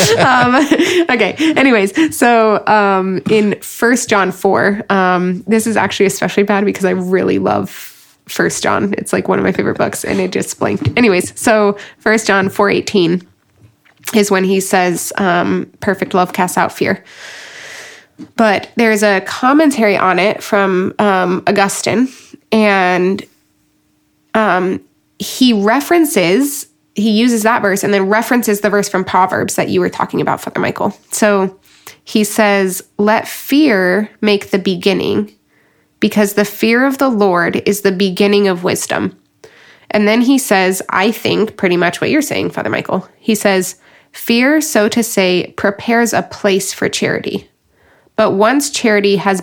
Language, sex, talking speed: English, female, 155 wpm